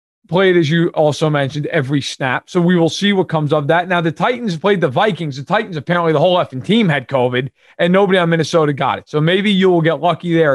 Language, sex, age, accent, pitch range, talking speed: English, male, 30-49, American, 155-205 Hz, 245 wpm